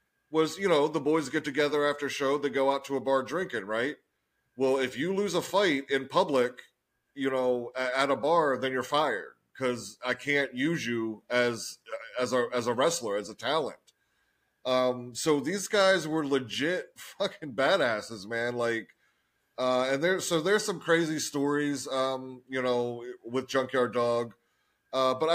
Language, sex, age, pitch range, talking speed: English, male, 30-49, 125-145 Hz, 175 wpm